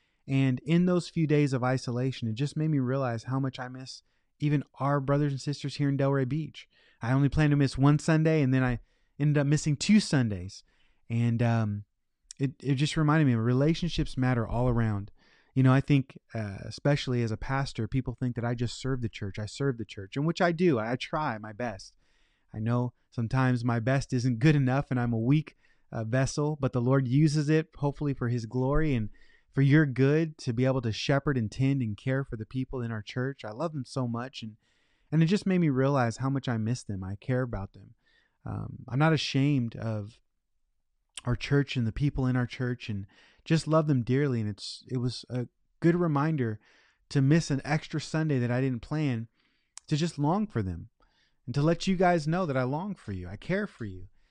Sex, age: male, 20-39